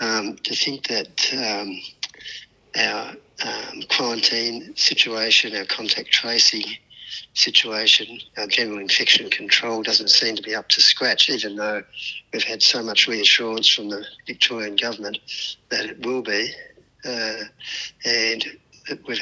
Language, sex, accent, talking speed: English, male, Australian, 130 wpm